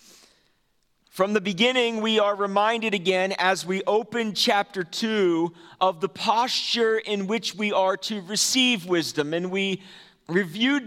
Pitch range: 185-245 Hz